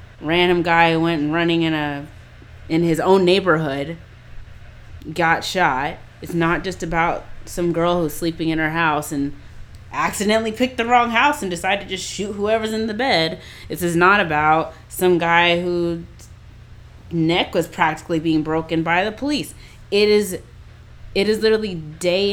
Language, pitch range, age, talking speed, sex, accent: English, 145-190 Hz, 20-39, 165 wpm, female, American